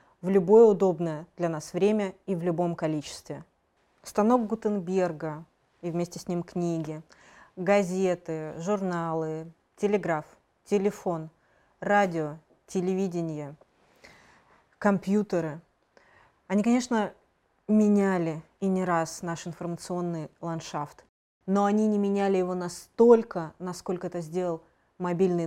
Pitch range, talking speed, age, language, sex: 170-210 Hz, 100 wpm, 20-39, Russian, female